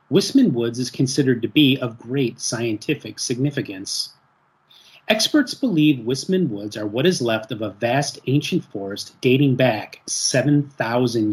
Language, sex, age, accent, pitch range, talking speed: English, male, 30-49, American, 115-155 Hz, 140 wpm